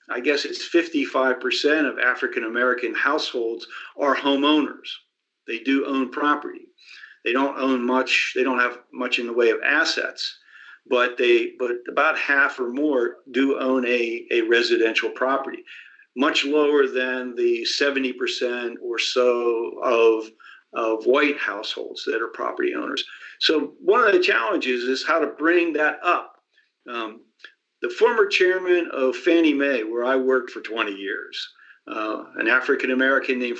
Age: 50-69